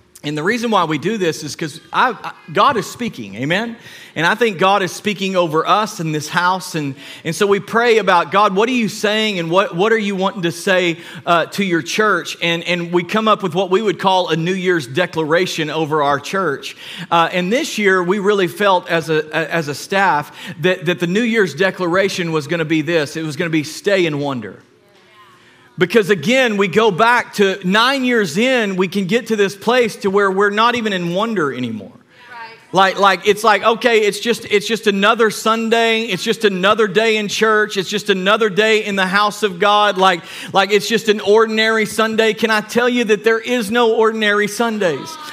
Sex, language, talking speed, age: male, English, 215 wpm, 40-59